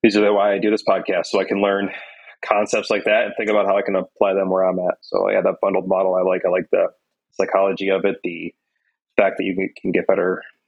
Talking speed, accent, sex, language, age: 255 wpm, American, male, English, 30-49